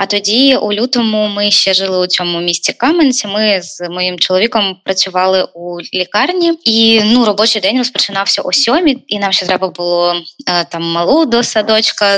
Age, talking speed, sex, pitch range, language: 20-39, 170 wpm, female, 185-225 Hz, Ukrainian